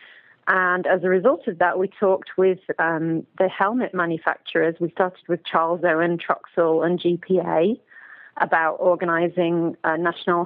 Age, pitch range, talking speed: 40-59, 170-190 Hz, 140 wpm